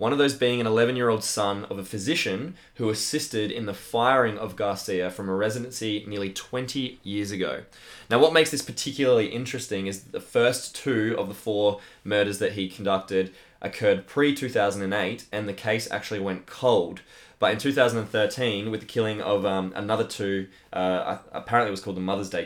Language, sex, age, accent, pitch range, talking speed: English, male, 20-39, Australian, 95-110 Hz, 180 wpm